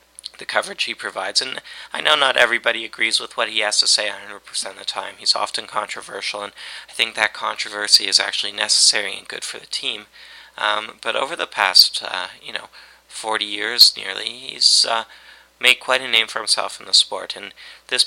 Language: English